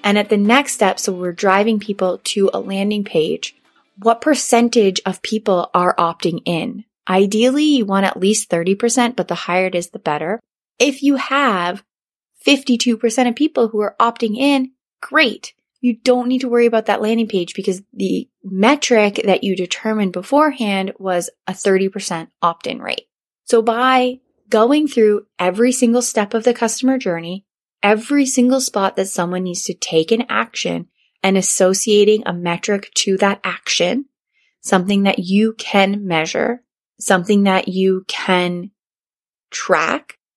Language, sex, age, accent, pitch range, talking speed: English, female, 20-39, American, 185-235 Hz, 155 wpm